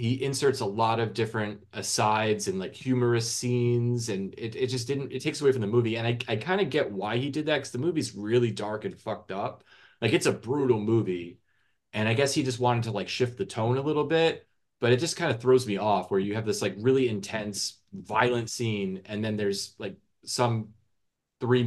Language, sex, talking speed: English, male, 225 wpm